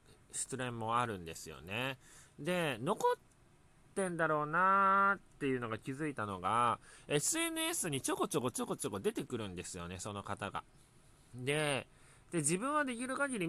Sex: male